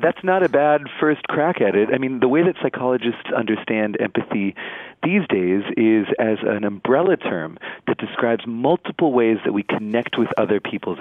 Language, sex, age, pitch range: Korean, male, 40-59, 105-140 Hz